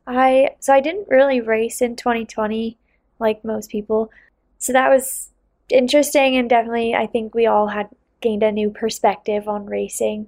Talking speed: 165 wpm